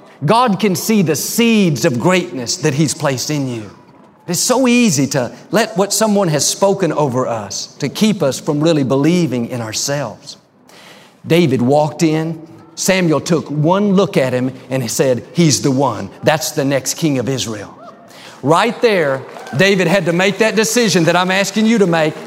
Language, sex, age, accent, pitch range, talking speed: English, male, 50-69, American, 140-190 Hz, 180 wpm